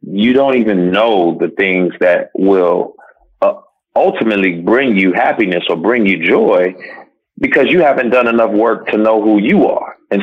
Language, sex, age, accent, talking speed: English, male, 30-49, American, 170 wpm